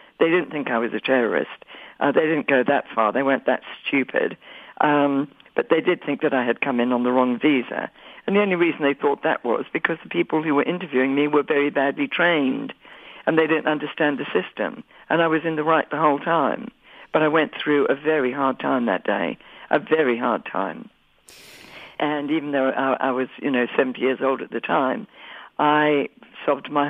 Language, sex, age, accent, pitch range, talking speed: English, female, 60-79, British, 135-160 Hz, 215 wpm